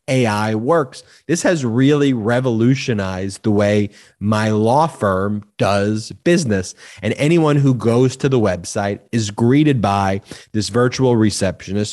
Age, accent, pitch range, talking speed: 30-49, American, 110-140 Hz, 130 wpm